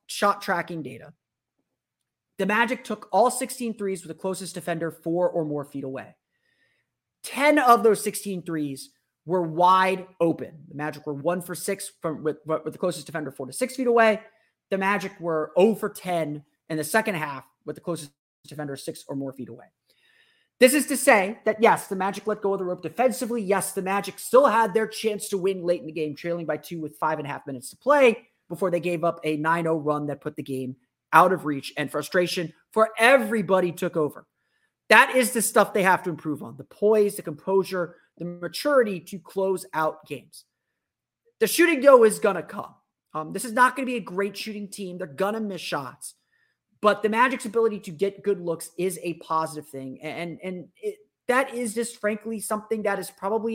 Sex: male